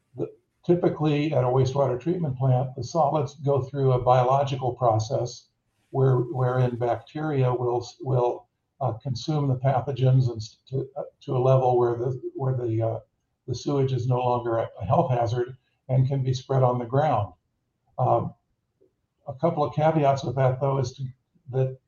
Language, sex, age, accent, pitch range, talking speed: English, male, 50-69, American, 120-140 Hz, 160 wpm